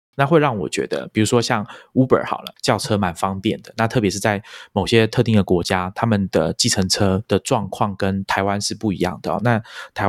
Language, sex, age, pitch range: Chinese, male, 20-39, 95-120 Hz